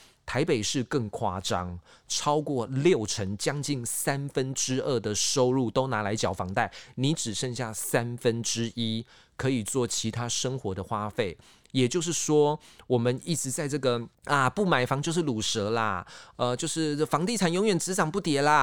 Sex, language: male, Chinese